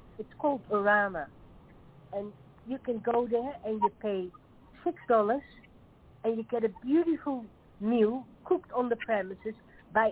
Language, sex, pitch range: English, female, 175-235 Hz